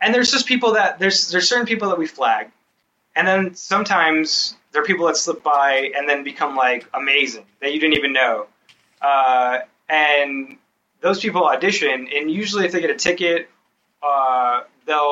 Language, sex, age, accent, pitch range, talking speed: English, male, 20-39, American, 135-175 Hz, 180 wpm